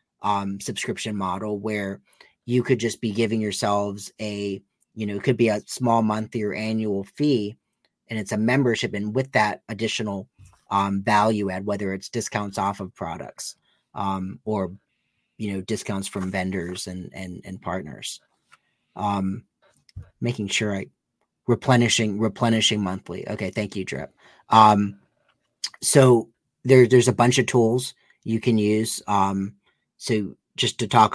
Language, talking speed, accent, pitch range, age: English, 145 wpm, American, 100-115 Hz, 30-49